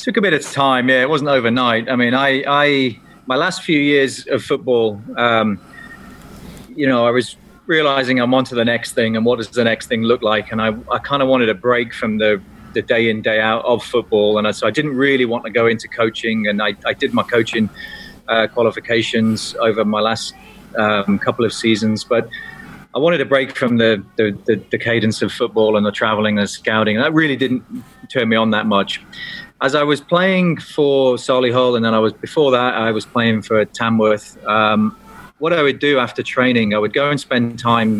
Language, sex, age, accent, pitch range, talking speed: English, male, 30-49, British, 110-130 Hz, 220 wpm